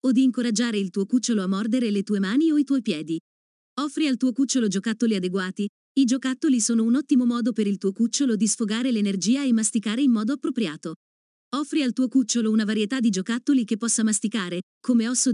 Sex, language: female, Italian